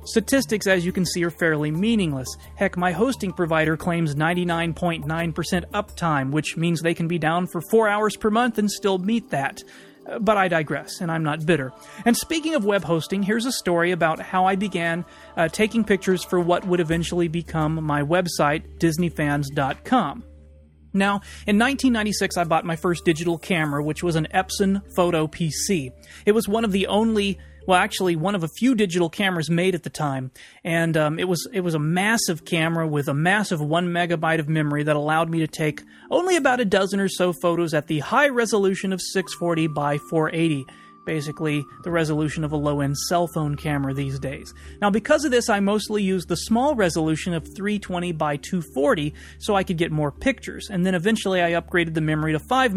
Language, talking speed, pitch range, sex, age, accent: English, 190 wpm, 155-195 Hz, male, 30-49, American